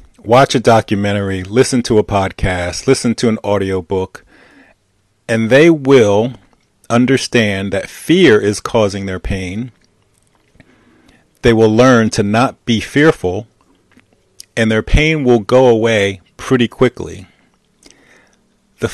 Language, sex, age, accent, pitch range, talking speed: English, male, 40-59, American, 100-120 Hz, 115 wpm